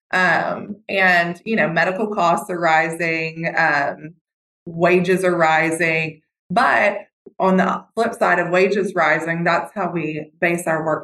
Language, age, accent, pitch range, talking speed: English, 20-39, American, 160-185 Hz, 140 wpm